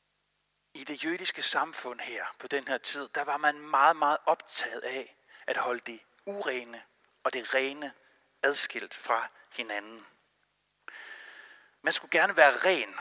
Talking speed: 140 wpm